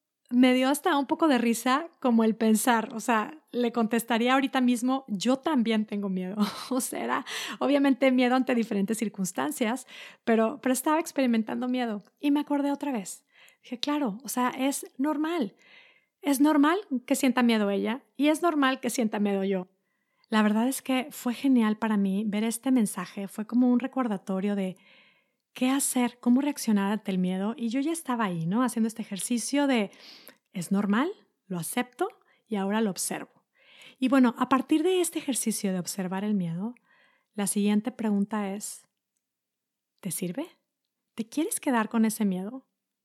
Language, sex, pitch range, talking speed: Spanish, female, 215-275 Hz, 170 wpm